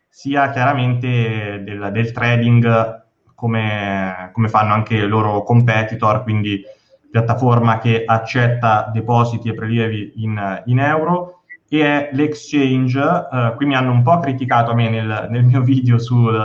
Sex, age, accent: male, 20-39, native